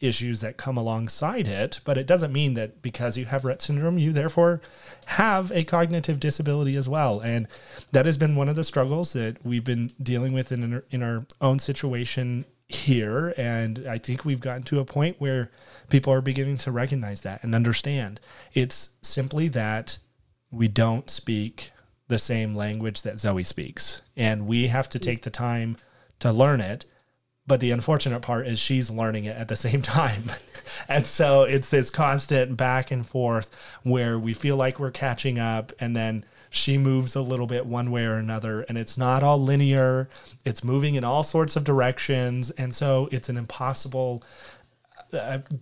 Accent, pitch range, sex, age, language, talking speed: American, 115-135 Hz, male, 30-49, English, 180 wpm